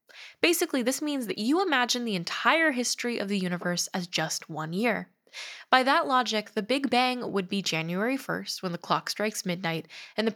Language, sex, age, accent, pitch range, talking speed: English, female, 10-29, American, 185-245 Hz, 190 wpm